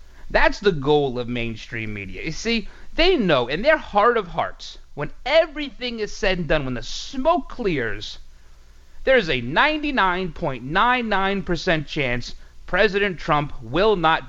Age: 30-49